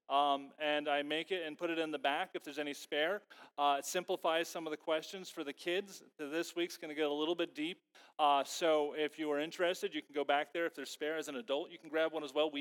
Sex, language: male, English